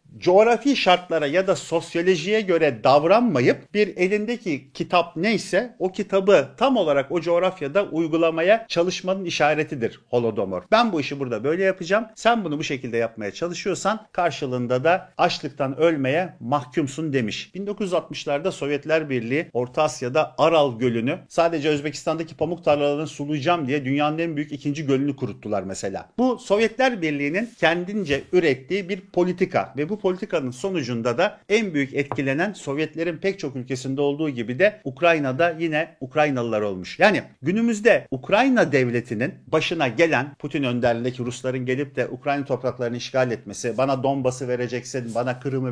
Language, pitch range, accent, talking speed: Turkish, 130-185 Hz, native, 140 wpm